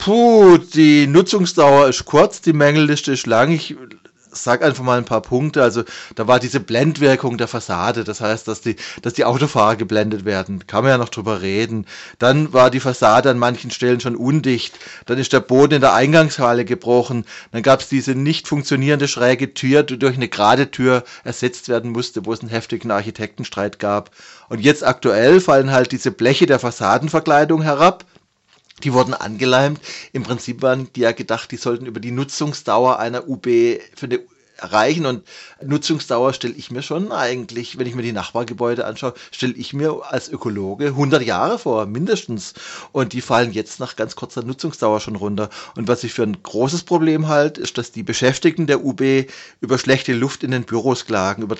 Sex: male